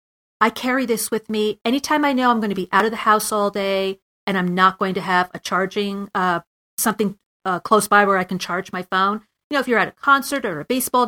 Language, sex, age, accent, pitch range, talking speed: English, female, 40-59, American, 185-230 Hz, 255 wpm